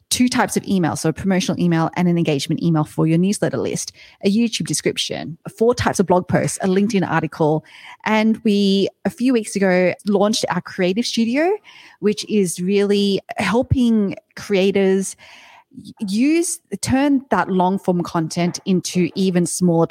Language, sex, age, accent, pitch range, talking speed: English, female, 30-49, Australian, 160-205 Hz, 155 wpm